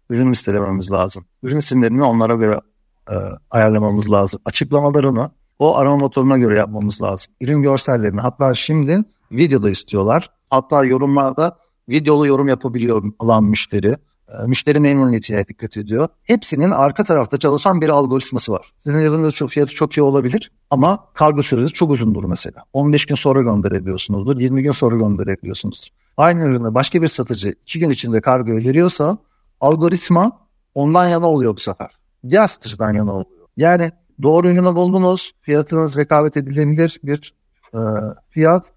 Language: Turkish